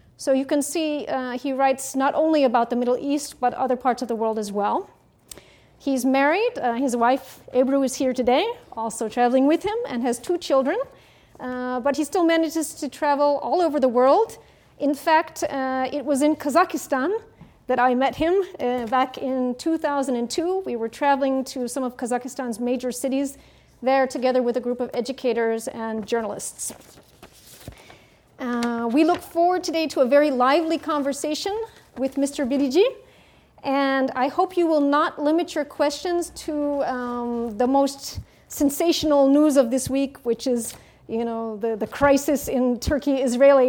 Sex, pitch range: female, 250-305 Hz